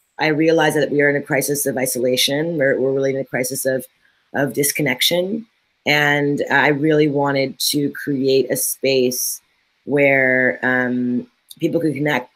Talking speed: 155 wpm